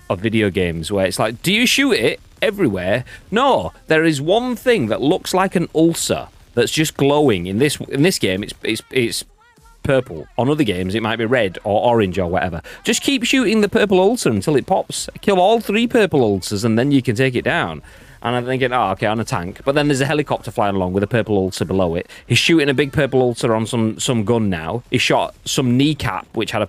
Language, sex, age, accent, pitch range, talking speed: English, male, 30-49, British, 100-145 Hz, 235 wpm